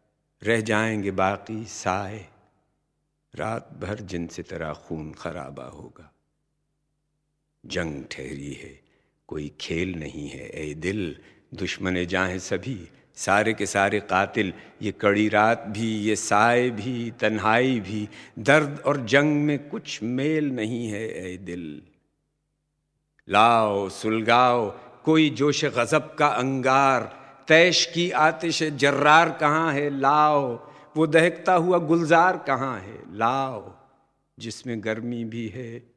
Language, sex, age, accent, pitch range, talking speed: Hindi, male, 60-79, native, 95-150 Hz, 120 wpm